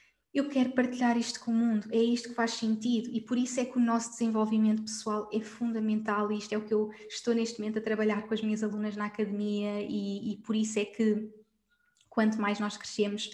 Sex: female